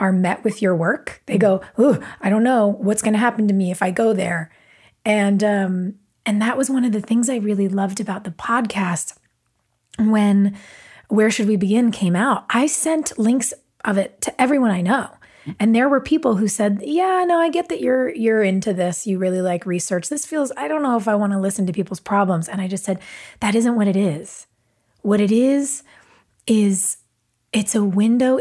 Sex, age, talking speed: female, 30-49, 210 wpm